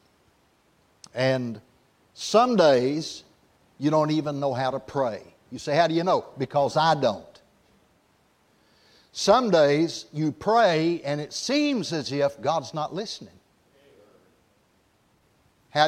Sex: male